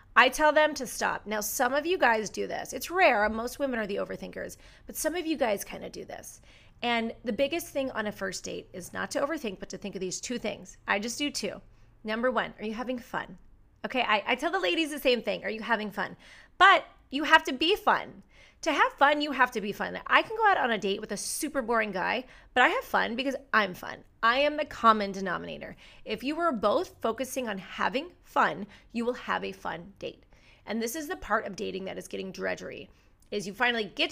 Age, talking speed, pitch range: 30-49, 240 wpm, 215-310 Hz